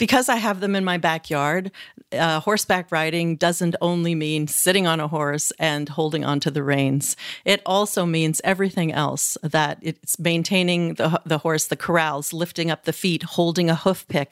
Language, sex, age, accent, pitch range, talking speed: English, female, 40-59, American, 160-195 Hz, 180 wpm